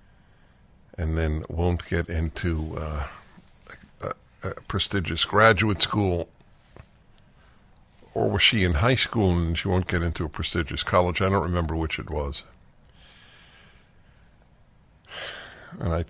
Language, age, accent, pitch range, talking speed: English, 60-79, American, 80-100 Hz, 120 wpm